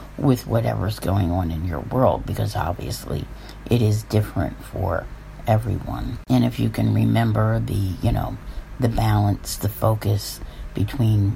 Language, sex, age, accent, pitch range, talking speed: English, female, 50-69, American, 95-125 Hz, 145 wpm